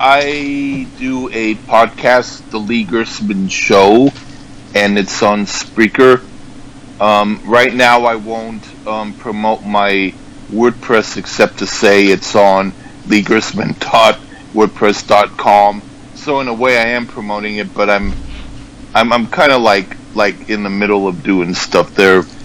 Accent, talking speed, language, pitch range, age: American, 130 wpm, English, 105-130 Hz, 50-69